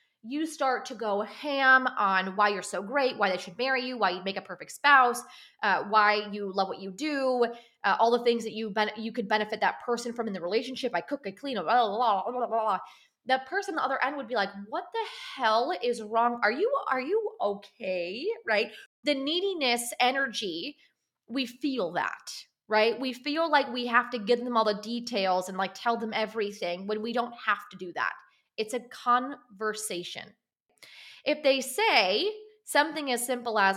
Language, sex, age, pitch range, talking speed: English, female, 20-39, 205-260 Hz, 205 wpm